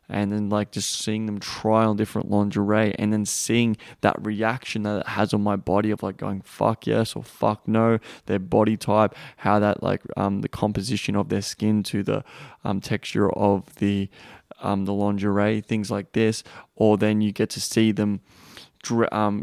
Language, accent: English, Australian